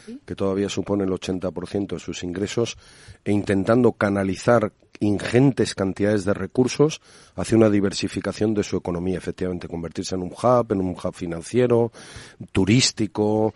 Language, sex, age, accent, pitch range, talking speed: Spanish, male, 40-59, Spanish, 95-120 Hz, 135 wpm